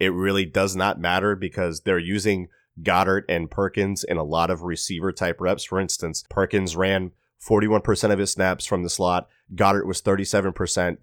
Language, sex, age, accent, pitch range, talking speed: English, male, 30-49, American, 90-110 Hz, 175 wpm